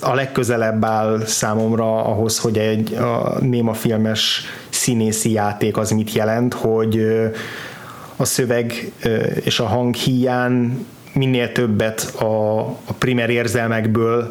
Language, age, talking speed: Hungarian, 30-49, 110 wpm